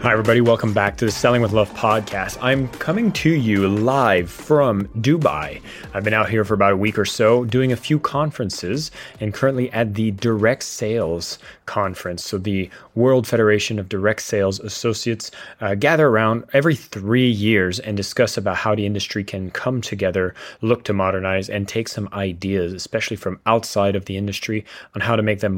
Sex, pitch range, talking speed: male, 100-120 Hz, 185 wpm